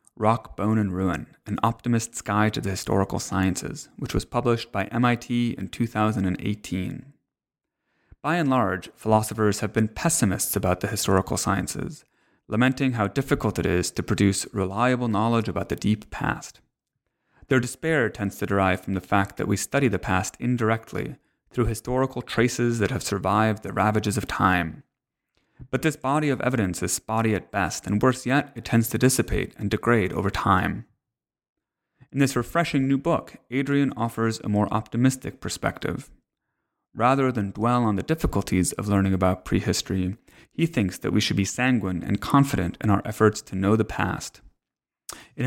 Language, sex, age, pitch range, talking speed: English, male, 30-49, 100-125 Hz, 165 wpm